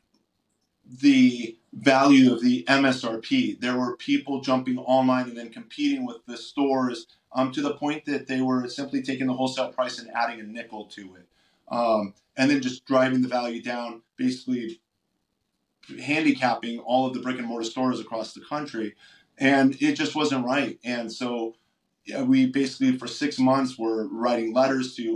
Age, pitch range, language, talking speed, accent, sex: 30-49, 115-145 Hz, English, 165 wpm, American, male